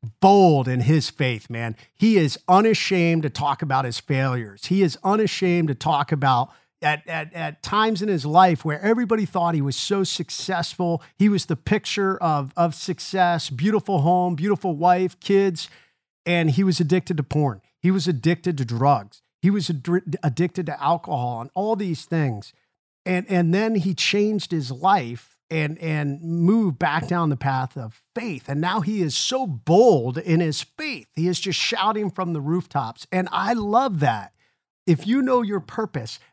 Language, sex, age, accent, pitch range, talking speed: English, male, 50-69, American, 140-190 Hz, 175 wpm